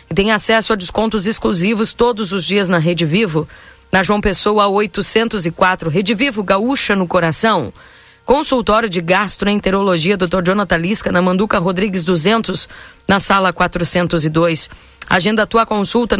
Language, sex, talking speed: Portuguese, female, 135 wpm